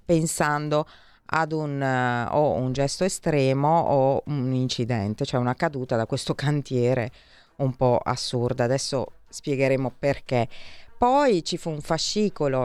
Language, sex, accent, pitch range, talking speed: Italian, female, native, 120-160 Hz, 135 wpm